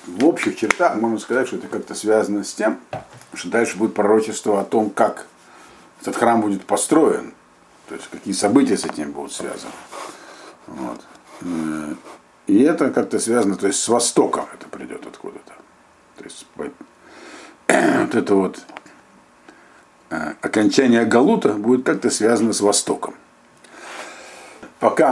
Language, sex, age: Russian, male, 50-69